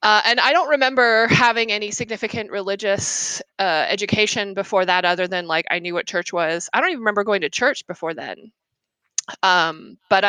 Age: 20-39